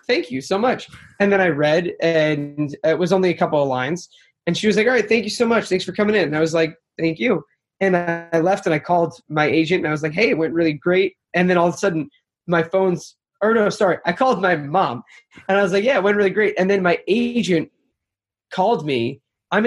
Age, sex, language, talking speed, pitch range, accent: 20-39, male, English, 255 wpm, 150-190 Hz, American